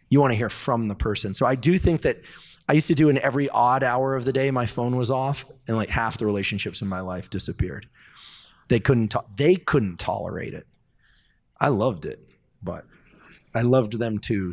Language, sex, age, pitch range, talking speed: English, male, 30-49, 105-140 Hz, 210 wpm